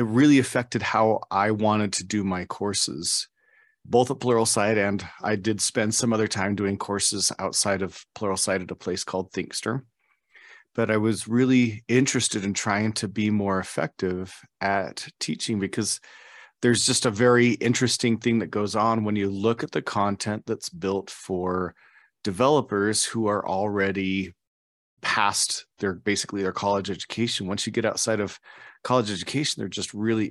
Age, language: 30-49, English